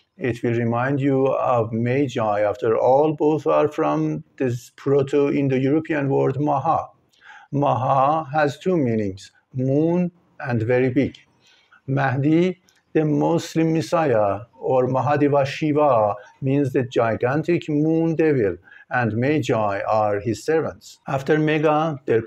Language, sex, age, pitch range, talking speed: English, male, 60-79, 120-155 Hz, 115 wpm